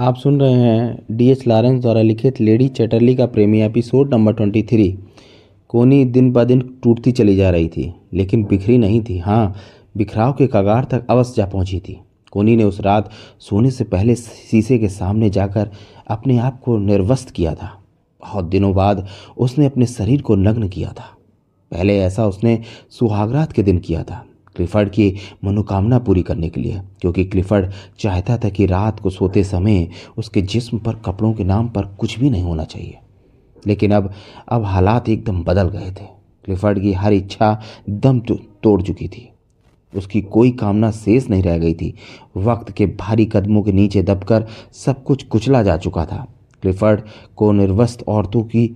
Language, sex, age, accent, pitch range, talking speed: Hindi, male, 30-49, native, 100-120 Hz, 175 wpm